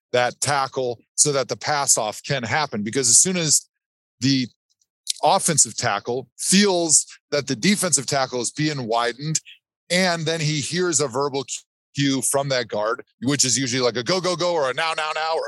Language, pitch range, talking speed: English, 125-160 Hz, 185 wpm